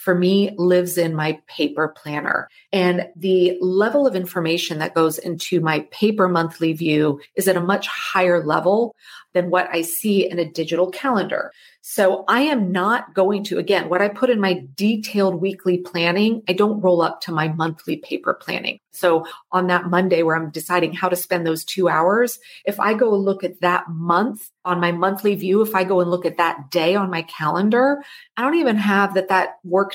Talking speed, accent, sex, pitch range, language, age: 200 wpm, American, female, 170-205 Hz, English, 30-49